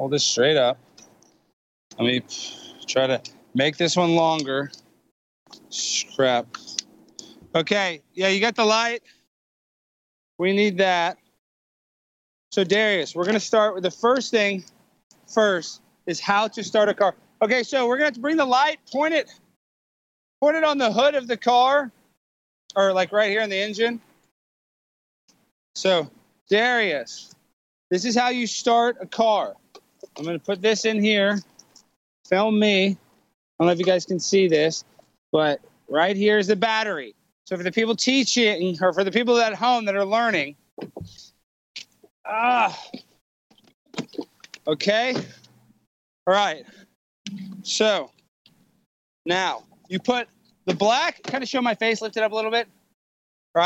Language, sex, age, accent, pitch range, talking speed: English, male, 30-49, American, 180-230 Hz, 150 wpm